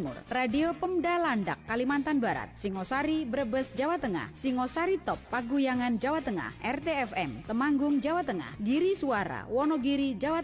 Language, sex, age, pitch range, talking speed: Indonesian, female, 30-49, 250-315 Hz, 125 wpm